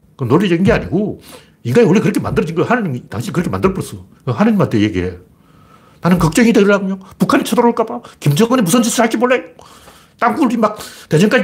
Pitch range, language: 105-175 Hz, Korean